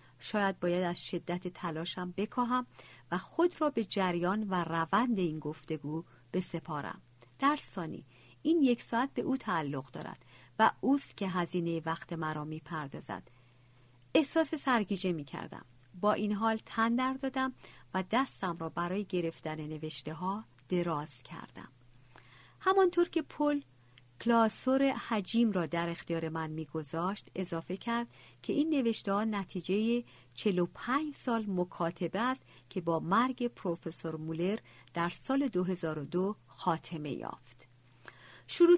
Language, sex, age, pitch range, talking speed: Persian, female, 50-69, 160-235 Hz, 130 wpm